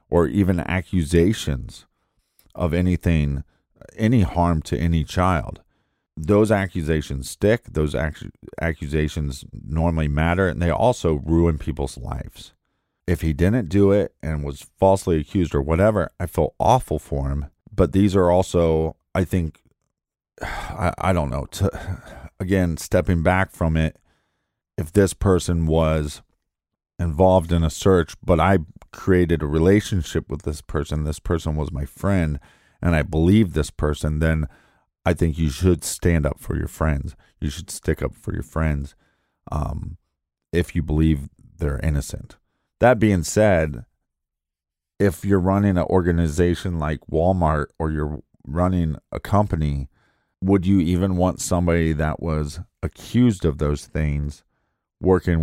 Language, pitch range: English, 75-90 Hz